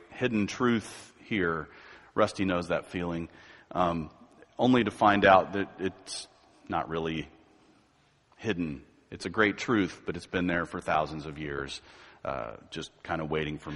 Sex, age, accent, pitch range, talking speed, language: male, 40-59, American, 95-120 Hz, 155 wpm, English